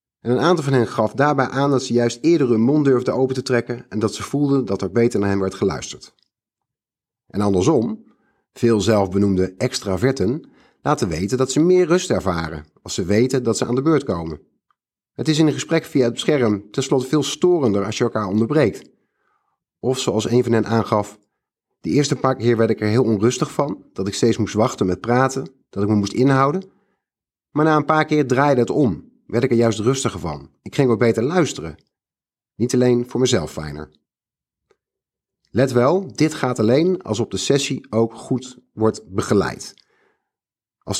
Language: Dutch